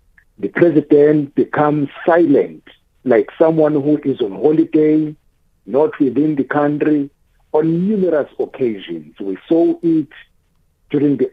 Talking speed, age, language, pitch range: 115 wpm, 50-69, English, 130-160 Hz